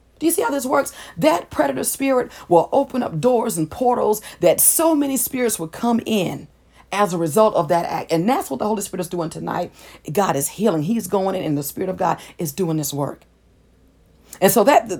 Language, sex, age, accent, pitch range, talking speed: English, female, 40-59, American, 180-250 Hz, 220 wpm